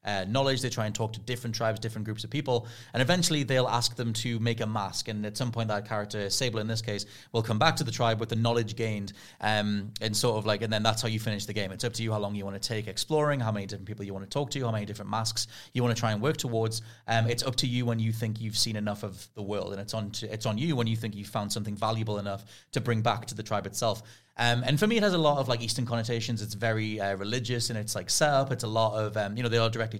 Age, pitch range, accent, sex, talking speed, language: 30-49, 105-120 Hz, British, male, 305 wpm, English